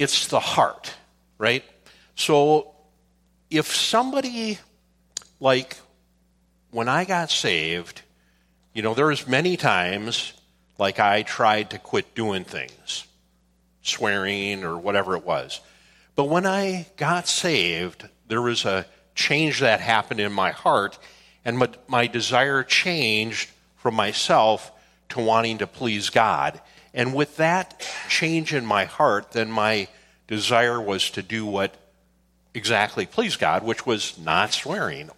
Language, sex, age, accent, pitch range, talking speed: English, male, 50-69, American, 90-145 Hz, 130 wpm